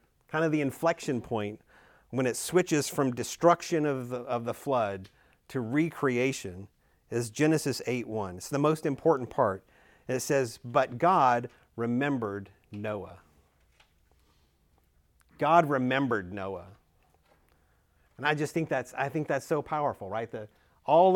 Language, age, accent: English, 40-59, American